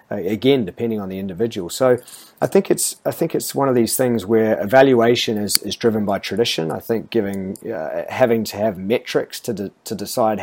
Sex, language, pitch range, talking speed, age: male, English, 100-120 Hz, 200 wpm, 30-49